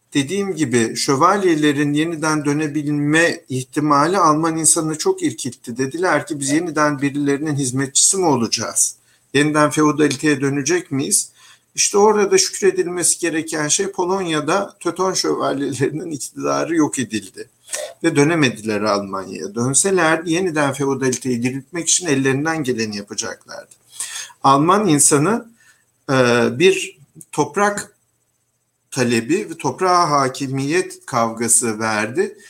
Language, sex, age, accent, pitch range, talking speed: Turkish, male, 50-69, native, 130-170 Hz, 100 wpm